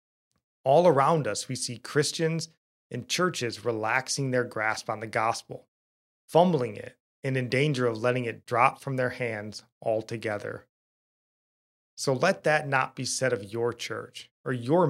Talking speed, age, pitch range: 155 wpm, 30-49, 110-135 Hz